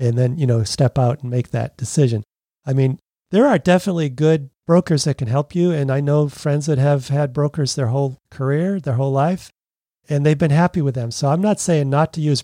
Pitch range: 135-175 Hz